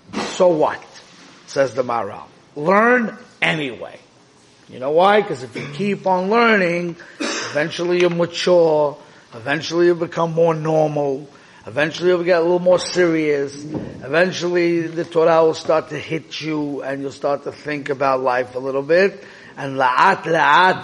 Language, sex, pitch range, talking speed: English, male, 140-180 Hz, 150 wpm